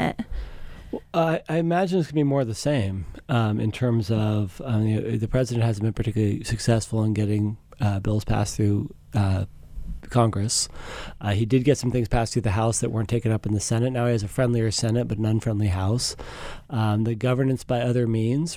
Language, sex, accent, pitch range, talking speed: English, male, American, 105-125 Hz, 215 wpm